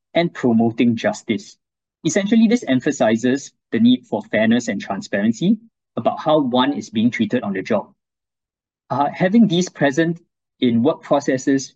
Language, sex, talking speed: English, male, 145 wpm